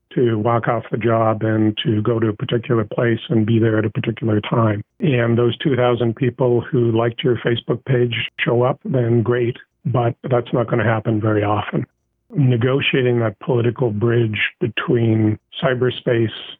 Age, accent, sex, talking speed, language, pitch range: 50-69, American, male, 165 wpm, English, 115-125 Hz